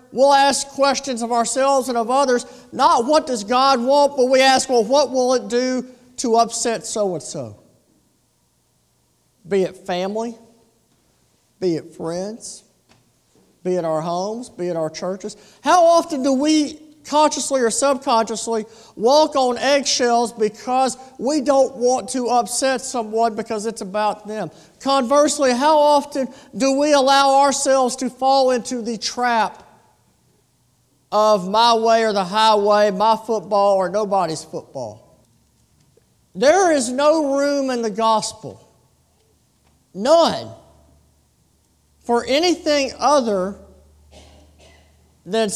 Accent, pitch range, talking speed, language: American, 190-265 Hz, 125 wpm, English